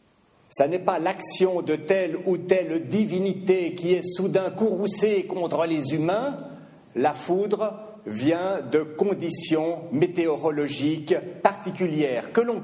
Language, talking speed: French, 120 wpm